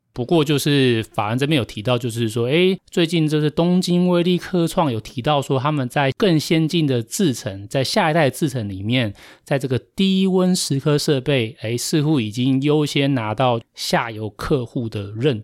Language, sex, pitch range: Chinese, male, 115-155 Hz